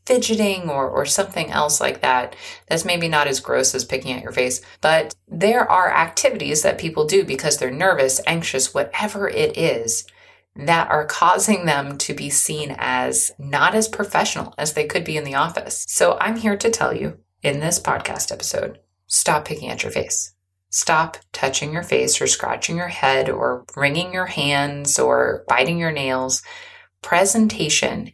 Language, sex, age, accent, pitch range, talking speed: English, female, 20-39, American, 135-205 Hz, 170 wpm